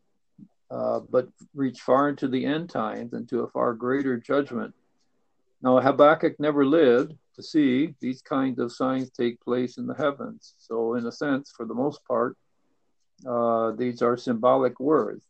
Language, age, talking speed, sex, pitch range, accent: English, 60-79, 165 wpm, male, 120-135 Hz, American